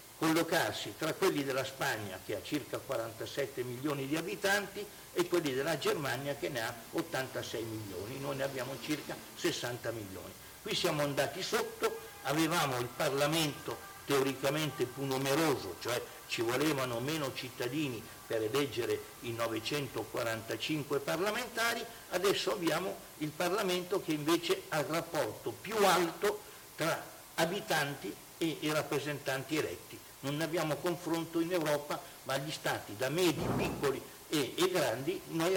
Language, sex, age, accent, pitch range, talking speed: Italian, male, 60-79, native, 135-180 Hz, 135 wpm